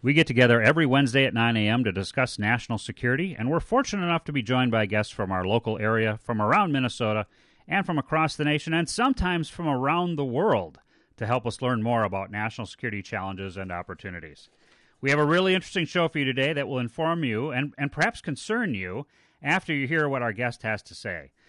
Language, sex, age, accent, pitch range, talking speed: English, male, 40-59, American, 115-165 Hz, 215 wpm